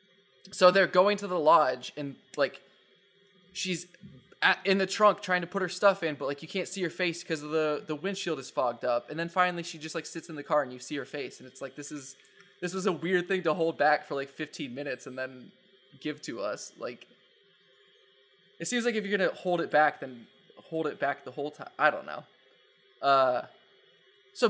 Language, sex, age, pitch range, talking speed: English, male, 20-39, 150-185 Hz, 230 wpm